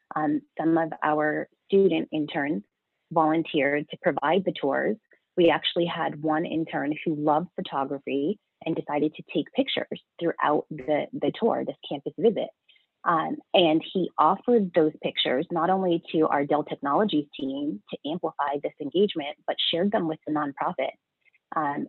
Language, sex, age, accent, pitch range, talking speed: English, female, 30-49, American, 150-180 Hz, 150 wpm